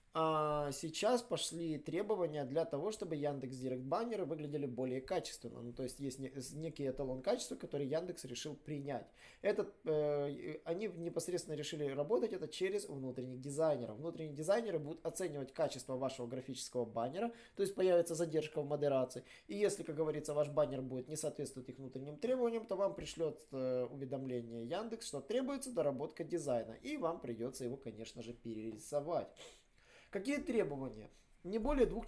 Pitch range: 135-195 Hz